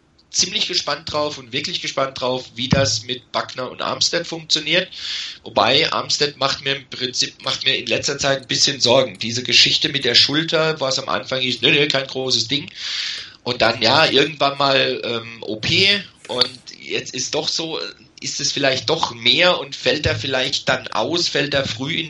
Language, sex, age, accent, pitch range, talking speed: German, male, 40-59, German, 120-145 Hz, 195 wpm